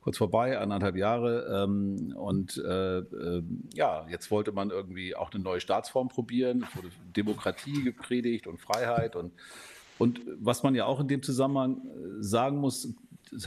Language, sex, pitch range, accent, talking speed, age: German, male, 95-125 Hz, German, 145 wpm, 50-69